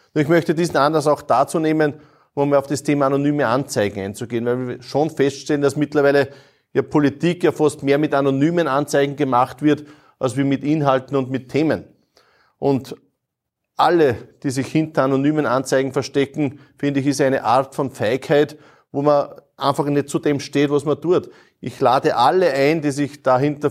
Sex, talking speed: male, 170 wpm